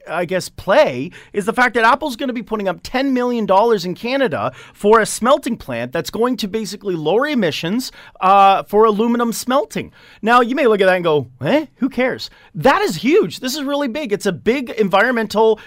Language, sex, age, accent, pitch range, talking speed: English, male, 30-49, American, 190-255 Hz, 205 wpm